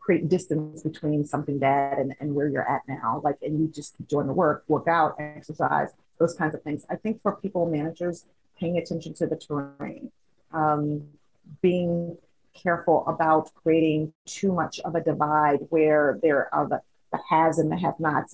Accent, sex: American, female